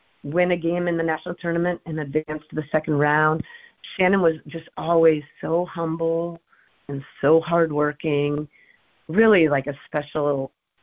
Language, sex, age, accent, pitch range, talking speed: English, female, 40-59, American, 145-175 Hz, 145 wpm